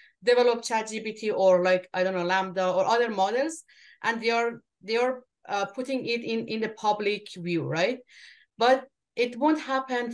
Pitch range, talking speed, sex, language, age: 190-250 Hz, 170 wpm, female, English, 30-49